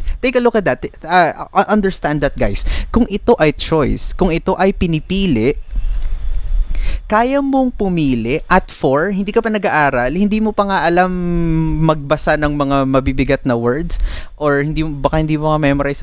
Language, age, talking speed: Filipino, 20-39, 160 wpm